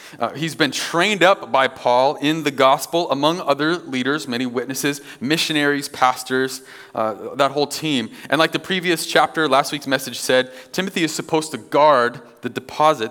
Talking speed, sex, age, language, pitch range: 170 wpm, male, 30-49, English, 120-155 Hz